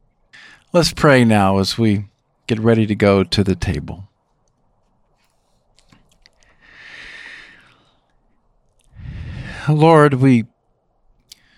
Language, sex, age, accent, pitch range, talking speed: English, male, 50-69, American, 110-150 Hz, 75 wpm